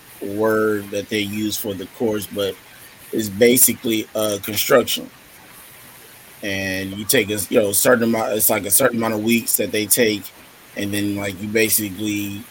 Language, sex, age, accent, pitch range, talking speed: English, male, 20-39, American, 100-120 Hz, 170 wpm